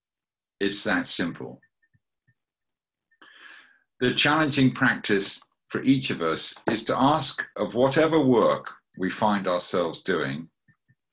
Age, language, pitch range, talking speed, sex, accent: 50-69, English, 100-135 Hz, 110 wpm, male, British